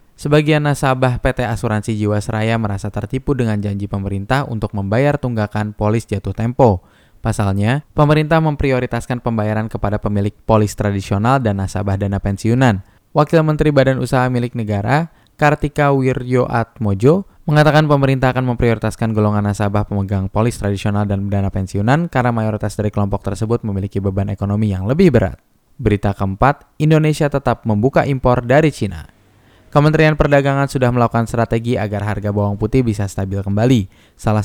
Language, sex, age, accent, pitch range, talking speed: Indonesian, male, 10-29, native, 105-135 Hz, 140 wpm